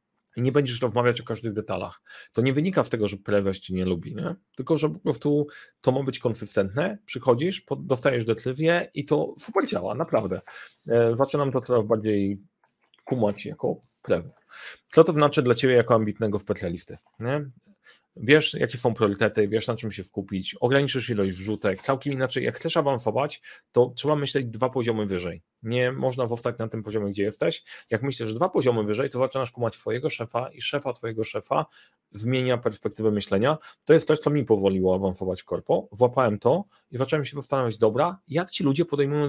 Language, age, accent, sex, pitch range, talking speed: Polish, 40-59, native, male, 110-140 Hz, 180 wpm